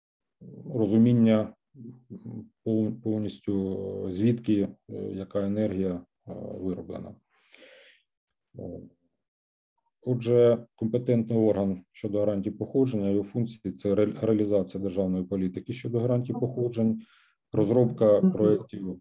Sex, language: male, Ukrainian